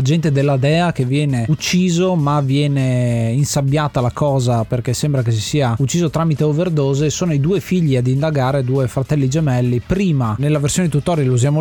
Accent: native